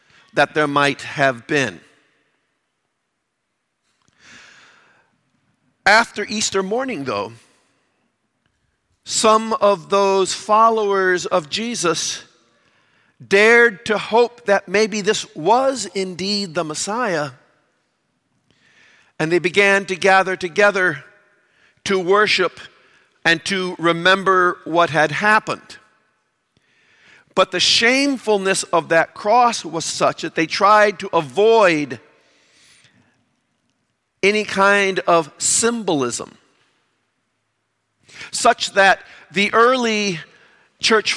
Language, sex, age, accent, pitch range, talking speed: English, male, 50-69, American, 170-215 Hz, 90 wpm